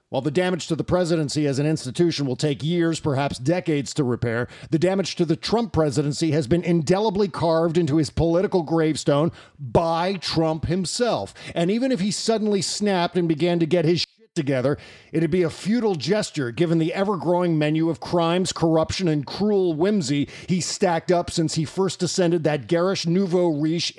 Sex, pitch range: male, 150-180 Hz